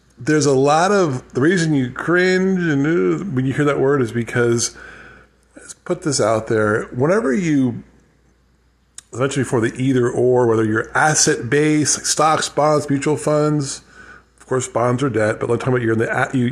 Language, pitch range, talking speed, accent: English, 120-155 Hz, 185 wpm, American